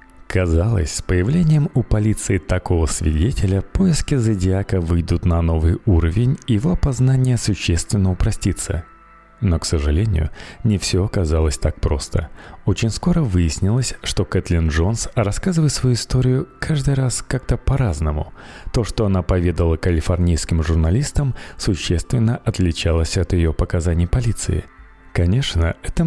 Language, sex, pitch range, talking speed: Russian, male, 85-115 Hz, 120 wpm